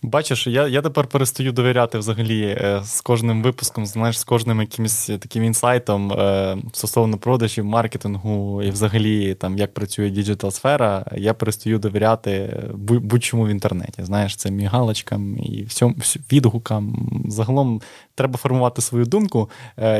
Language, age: Ukrainian, 20-39